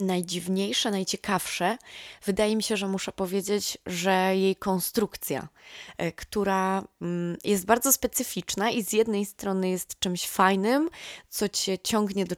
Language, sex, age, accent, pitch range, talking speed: Polish, female, 20-39, native, 170-195 Hz, 125 wpm